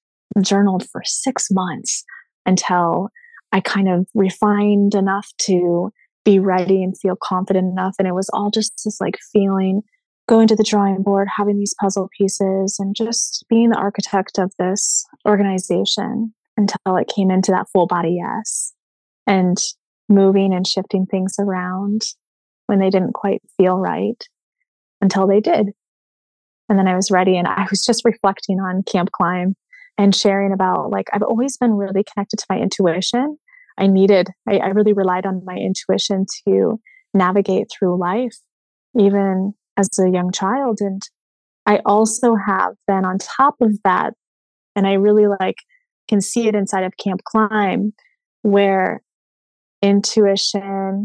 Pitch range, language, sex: 190-215 Hz, English, female